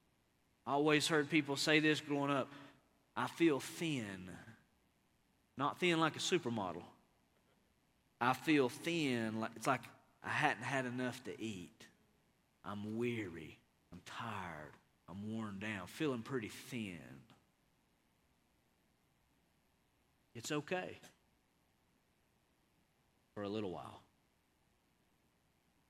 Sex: male